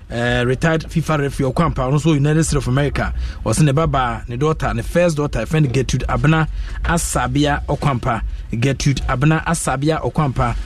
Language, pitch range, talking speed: English, 115-145 Hz, 185 wpm